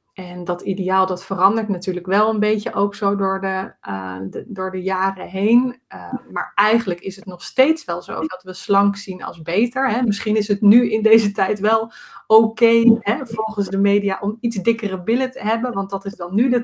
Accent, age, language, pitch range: Dutch, 20-39, Dutch, 190-220 Hz